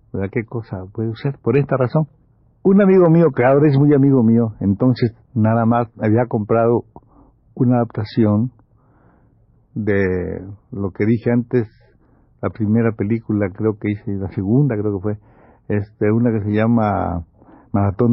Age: 60-79